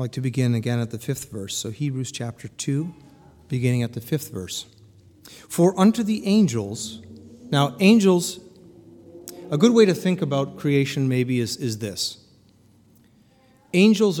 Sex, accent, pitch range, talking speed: male, American, 120-175 Hz, 150 wpm